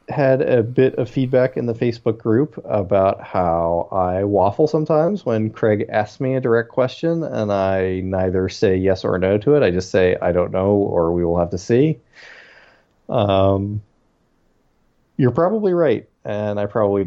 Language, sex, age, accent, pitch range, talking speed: English, male, 30-49, American, 95-120 Hz, 170 wpm